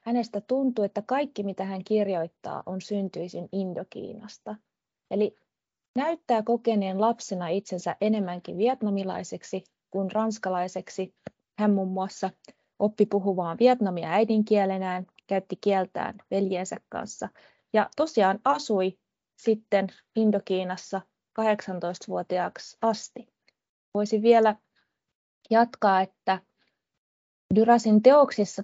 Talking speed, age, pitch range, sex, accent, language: 90 wpm, 20-39, 185-220 Hz, female, native, Finnish